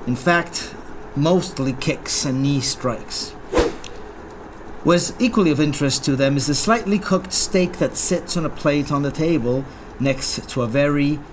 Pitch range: 125-170 Hz